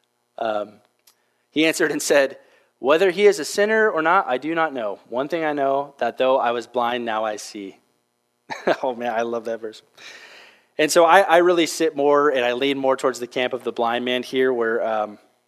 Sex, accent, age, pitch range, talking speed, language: male, American, 20-39, 115-140 Hz, 215 wpm, English